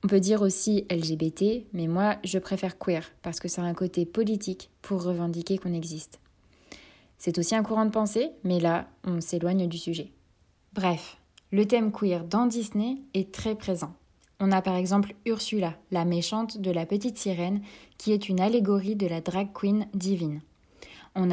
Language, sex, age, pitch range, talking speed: French, female, 20-39, 175-205 Hz, 175 wpm